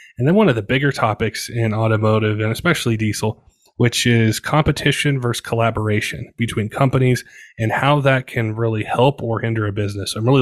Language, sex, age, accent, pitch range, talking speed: English, male, 20-39, American, 110-130 Hz, 185 wpm